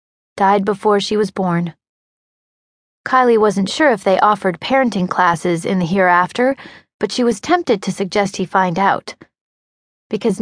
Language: English